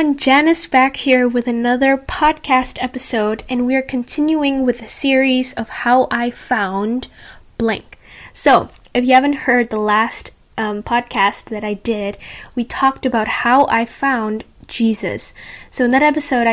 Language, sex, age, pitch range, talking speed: English, female, 10-29, 215-255 Hz, 155 wpm